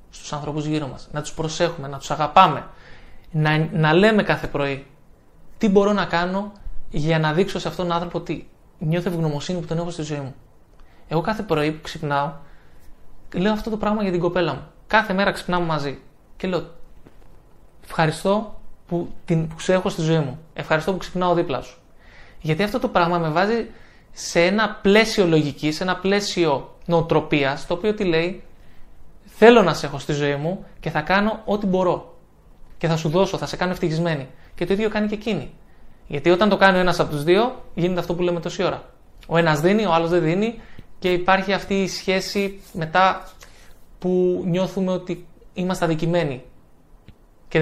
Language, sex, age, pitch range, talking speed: Greek, male, 20-39, 155-190 Hz, 180 wpm